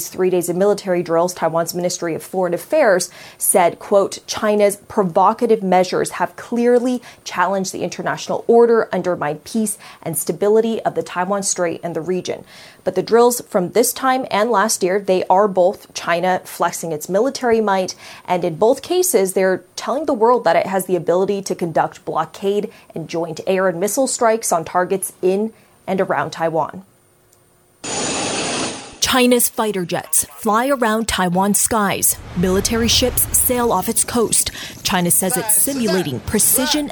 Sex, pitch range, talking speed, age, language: female, 180-230 Hz, 155 wpm, 20-39, English